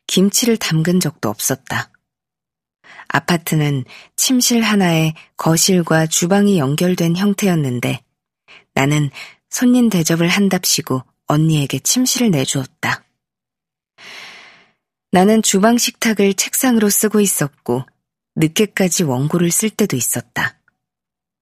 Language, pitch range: Korean, 150-205 Hz